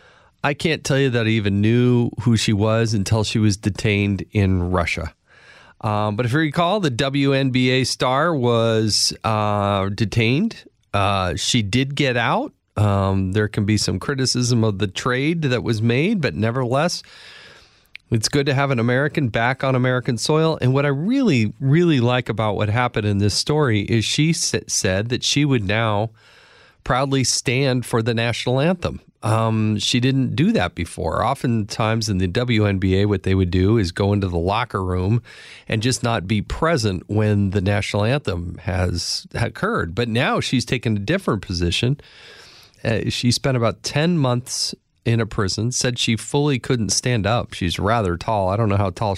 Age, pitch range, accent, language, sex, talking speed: 40-59, 105-130 Hz, American, English, male, 175 wpm